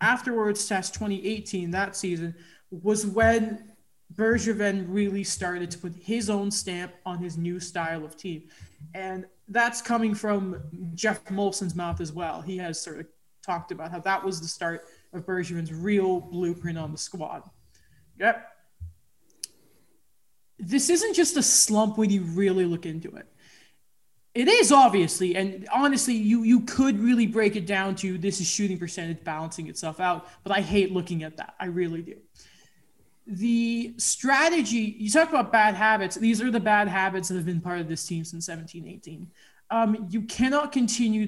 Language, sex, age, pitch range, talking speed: English, male, 20-39, 175-225 Hz, 170 wpm